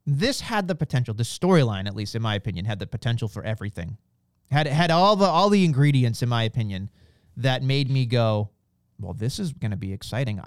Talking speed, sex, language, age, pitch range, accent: 210 wpm, male, English, 30-49, 120-160 Hz, American